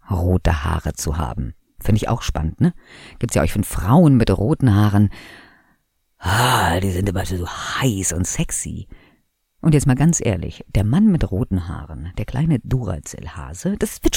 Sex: female